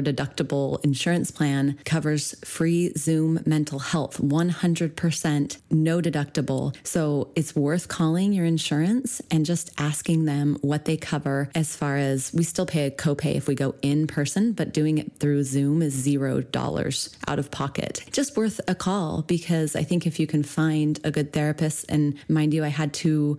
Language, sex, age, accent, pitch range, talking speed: English, female, 30-49, American, 145-170 Hz, 175 wpm